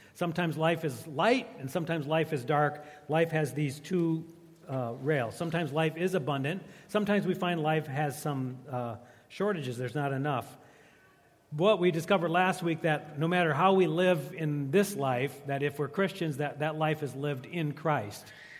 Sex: male